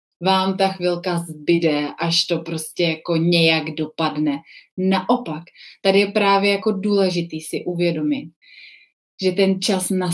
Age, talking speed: 30-49, 130 wpm